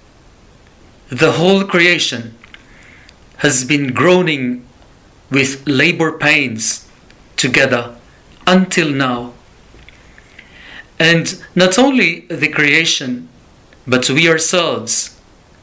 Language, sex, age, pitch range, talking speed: English, male, 40-59, 125-160 Hz, 75 wpm